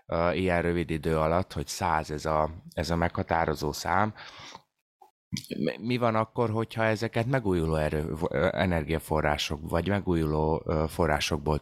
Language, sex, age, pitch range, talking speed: Hungarian, male, 30-49, 80-105 Hz, 120 wpm